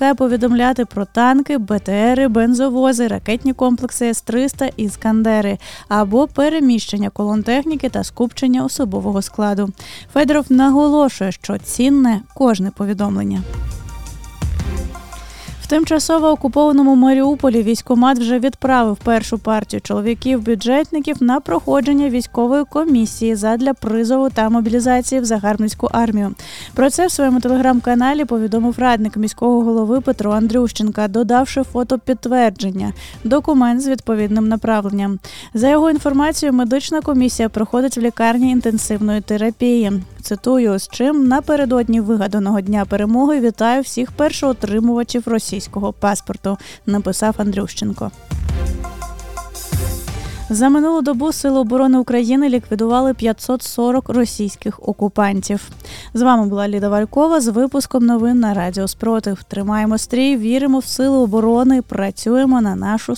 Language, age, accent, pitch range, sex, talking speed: Ukrainian, 20-39, native, 210-265 Hz, female, 110 wpm